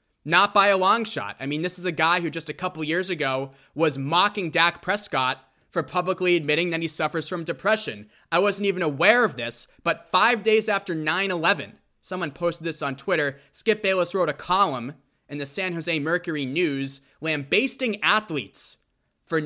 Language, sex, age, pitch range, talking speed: English, male, 20-39, 135-185 Hz, 180 wpm